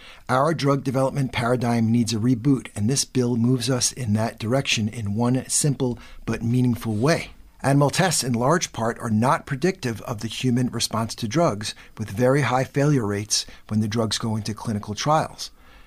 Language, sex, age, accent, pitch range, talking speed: English, male, 50-69, American, 110-135 Hz, 180 wpm